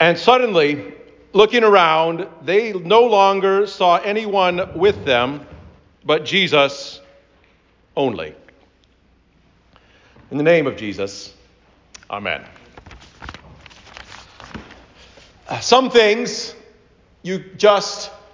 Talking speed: 80 wpm